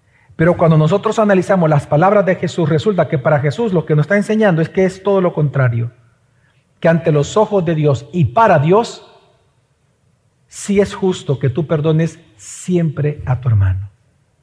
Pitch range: 130-210 Hz